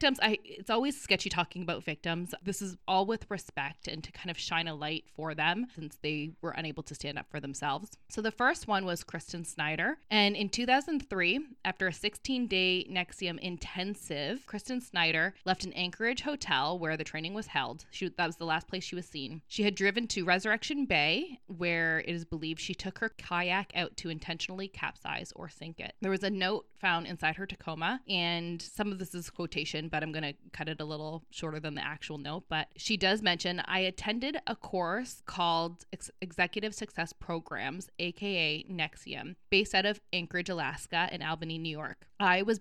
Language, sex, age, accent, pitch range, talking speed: English, female, 20-39, American, 160-195 Hz, 195 wpm